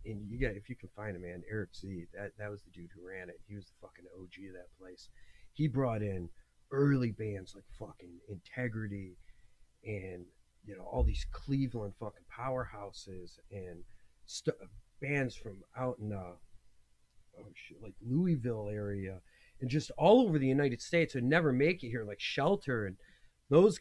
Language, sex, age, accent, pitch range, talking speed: English, male, 40-59, American, 100-135 Hz, 180 wpm